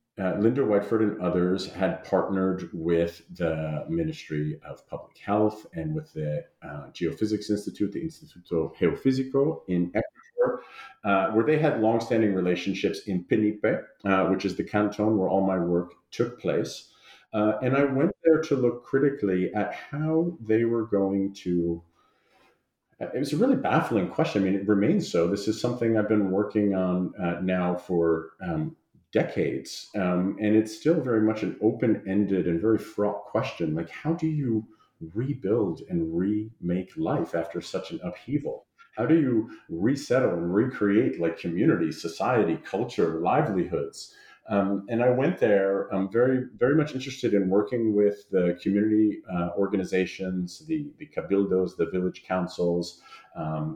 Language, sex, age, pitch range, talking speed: English, male, 40-59, 90-130 Hz, 155 wpm